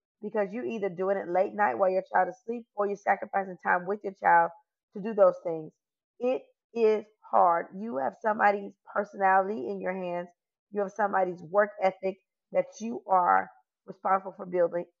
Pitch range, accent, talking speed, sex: 185-225 Hz, American, 175 wpm, female